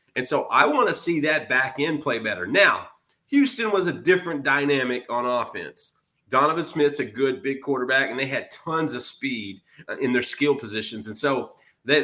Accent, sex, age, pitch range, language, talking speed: American, male, 30-49, 135-185 Hz, English, 190 wpm